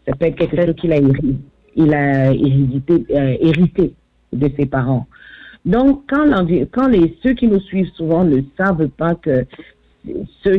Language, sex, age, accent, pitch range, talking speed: French, female, 50-69, French, 145-185 Hz, 155 wpm